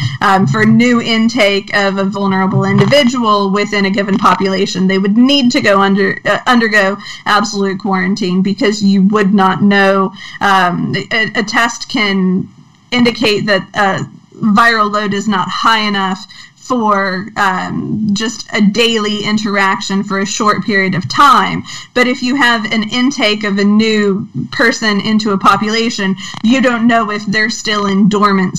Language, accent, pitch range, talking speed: English, American, 195-225 Hz, 155 wpm